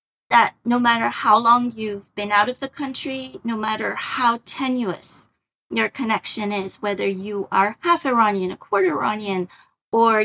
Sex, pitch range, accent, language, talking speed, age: female, 215-280 Hz, American, English, 160 wpm, 30-49